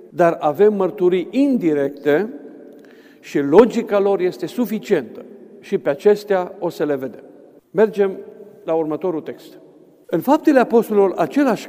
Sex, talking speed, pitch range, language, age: male, 125 wpm, 160-220 Hz, Romanian, 50-69